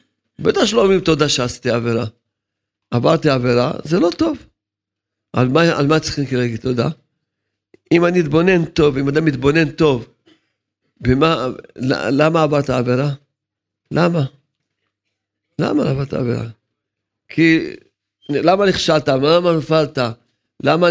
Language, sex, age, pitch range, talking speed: Hebrew, male, 50-69, 115-165 Hz, 115 wpm